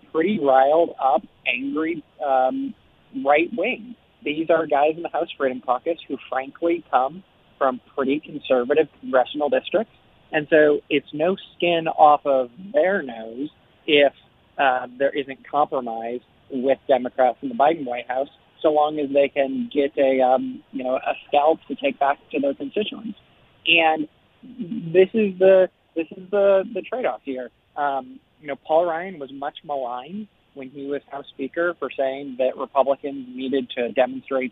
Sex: male